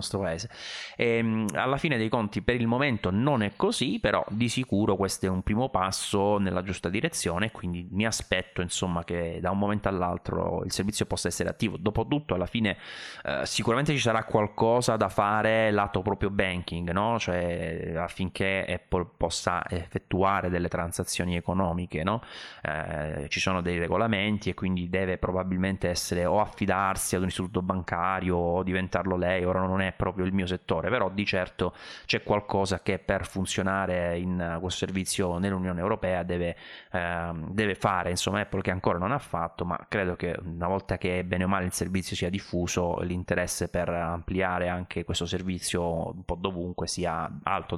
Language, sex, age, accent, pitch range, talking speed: Italian, male, 20-39, native, 90-100 Hz, 170 wpm